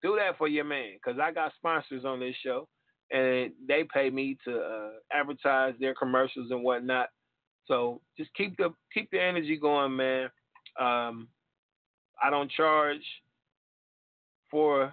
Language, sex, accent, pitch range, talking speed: English, male, American, 125-150 Hz, 150 wpm